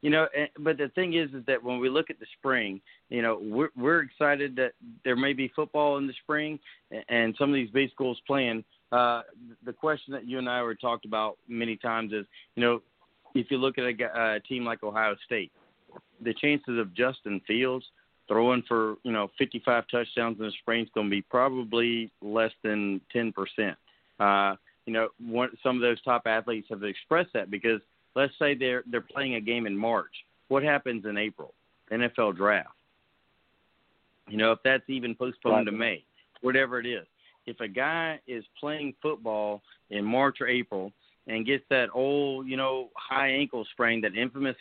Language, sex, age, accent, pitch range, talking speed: English, male, 40-59, American, 110-135 Hz, 190 wpm